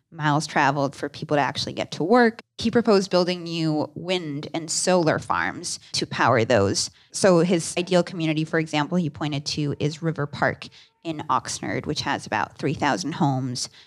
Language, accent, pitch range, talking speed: English, American, 150-180 Hz, 170 wpm